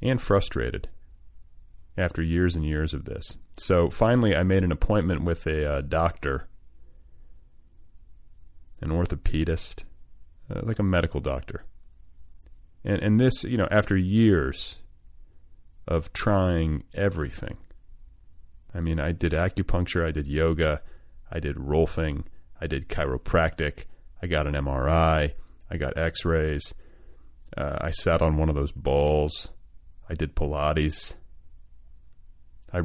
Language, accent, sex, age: English, American, male, 30-49